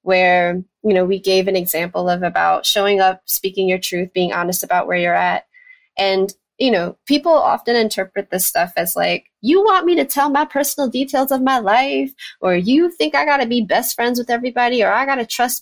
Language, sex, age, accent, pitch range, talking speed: English, female, 20-39, American, 180-235 Hz, 220 wpm